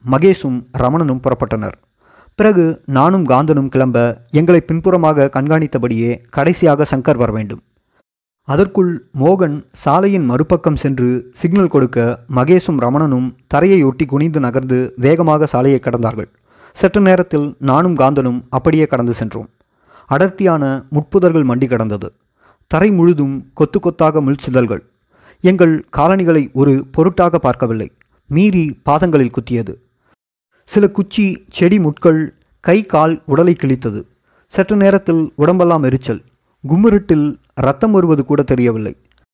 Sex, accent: male, native